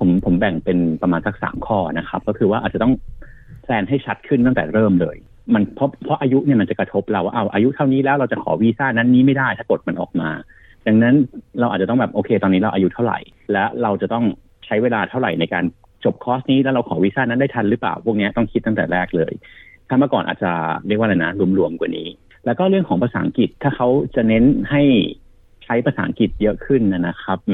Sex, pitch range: male, 95-125 Hz